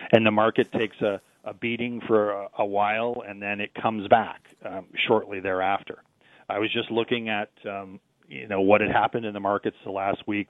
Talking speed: 205 wpm